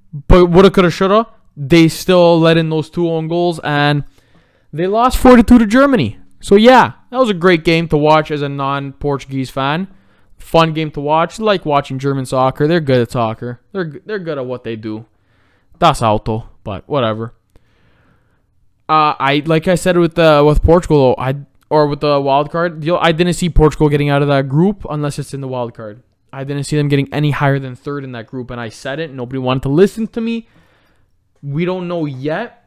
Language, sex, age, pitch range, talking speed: English, male, 20-39, 120-160 Hz, 210 wpm